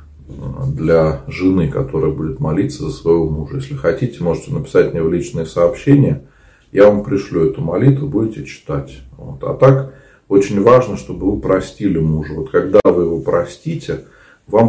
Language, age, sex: Russian, 40-59, male